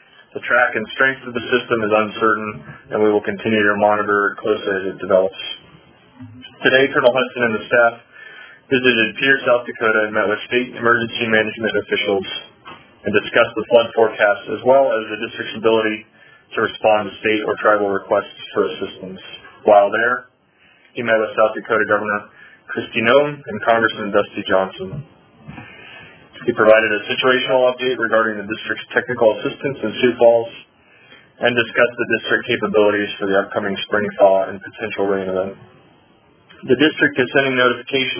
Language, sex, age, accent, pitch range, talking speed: English, male, 20-39, American, 105-120 Hz, 160 wpm